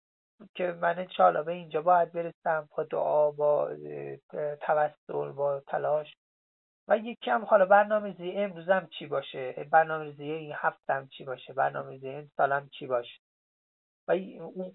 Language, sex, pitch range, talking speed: Persian, male, 140-195 Hz, 150 wpm